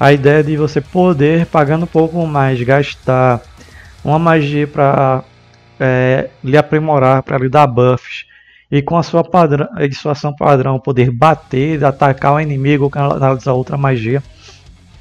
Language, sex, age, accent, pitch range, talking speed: Portuguese, male, 20-39, Brazilian, 130-150 Hz, 150 wpm